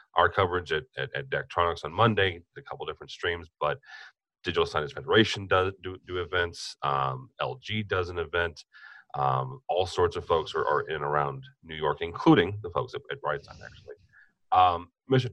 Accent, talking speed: American, 180 wpm